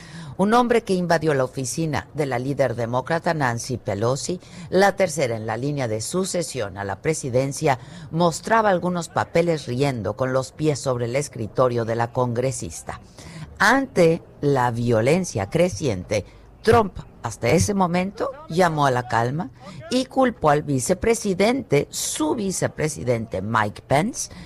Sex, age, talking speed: female, 50-69, 135 wpm